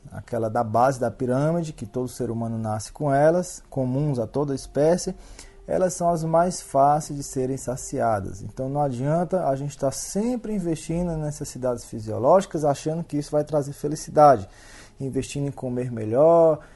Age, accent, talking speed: 20-39, Brazilian, 170 wpm